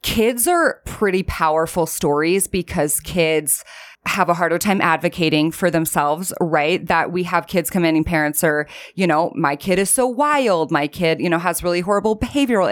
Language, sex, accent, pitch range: English, female, American, 160-195 Hz